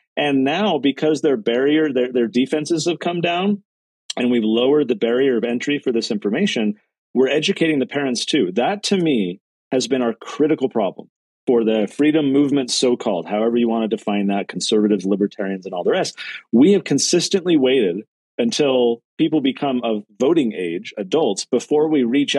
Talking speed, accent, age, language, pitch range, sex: 175 wpm, American, 40-59, English, 115-150 Hz, male